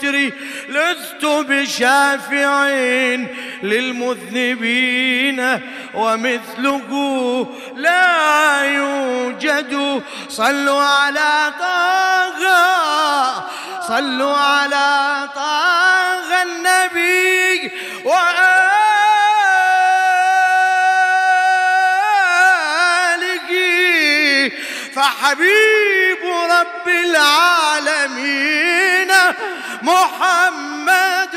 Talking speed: 35 wpm